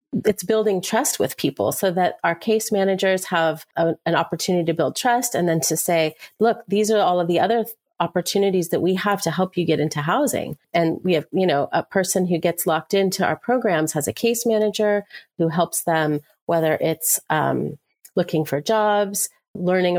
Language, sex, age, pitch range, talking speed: English, female, 30-49, 170-200 Hz, 190 wpm